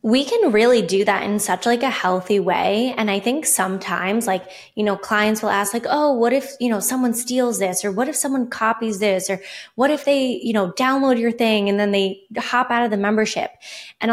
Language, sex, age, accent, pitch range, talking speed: English, female, 20-39, American, 195-250 Hz, 230 wpm